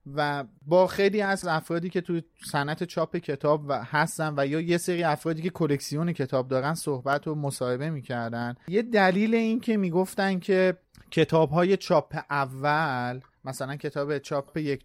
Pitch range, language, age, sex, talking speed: 145-185 Hz, Persian, 30-49, male, 150 wpm